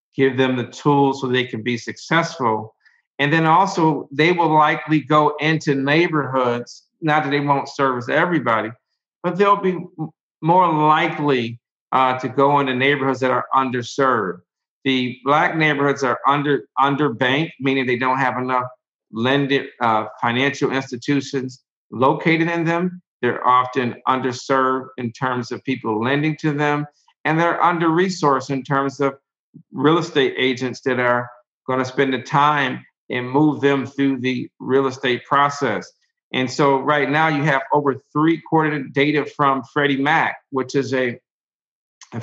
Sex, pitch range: male, 125-150 Hz